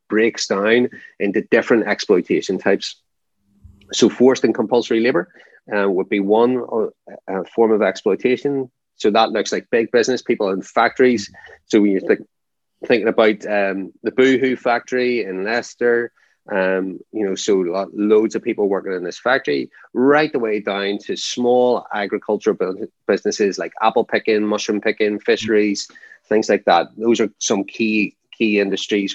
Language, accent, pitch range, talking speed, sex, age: English, Irish, 100-125 Hz, 150 wpm, male, 30-49